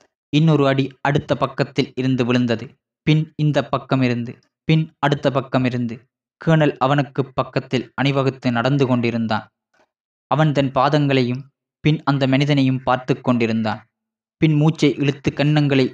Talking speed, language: 115 wpm, Tamil